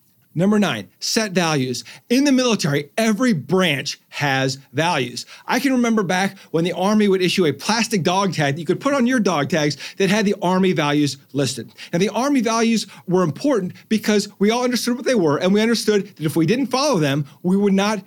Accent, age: American, 40-59